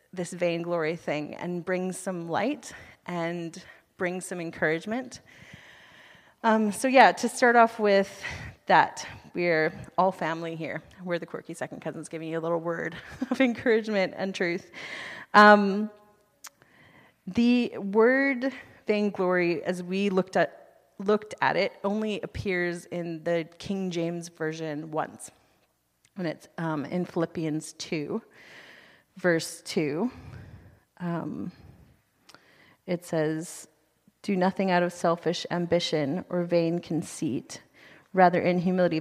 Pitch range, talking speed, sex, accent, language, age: 165-195 Hz, 120 wpm, female, American, English, 30-49